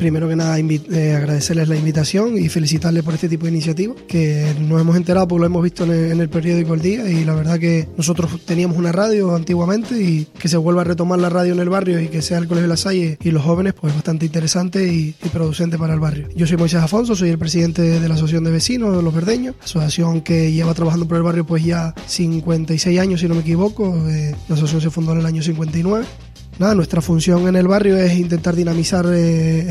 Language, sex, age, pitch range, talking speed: Spanish, male, 20-39, 165-185 Hz, 240 wpm